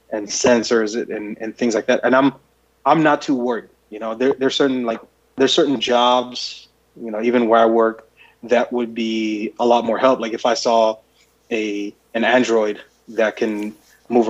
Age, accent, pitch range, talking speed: 20-39, American, 110-125 Hz, 190 wpm